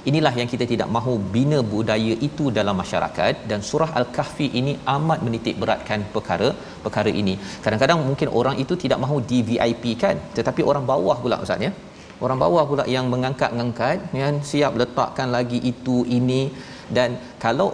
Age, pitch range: 40-59, 115-140 Hz